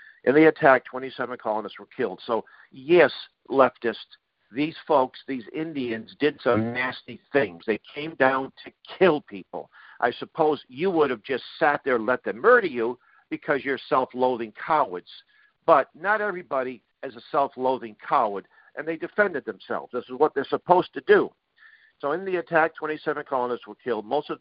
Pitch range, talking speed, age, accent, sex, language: 115-155 Hz, 170 wpm, 50-69, American, male, English